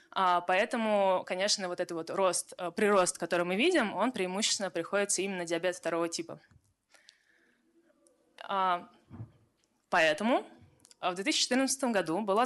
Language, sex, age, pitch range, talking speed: Russian, female, 20-39, 185-235 Hz, 105 wpm